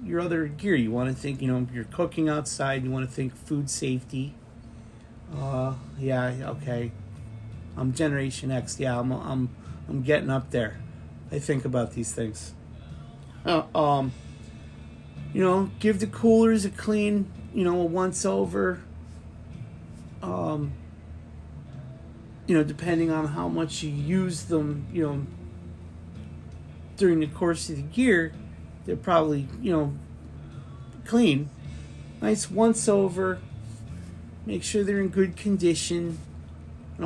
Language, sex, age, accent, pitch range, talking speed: English, male, 30-49, American, 110-165 Hz, 135 wpm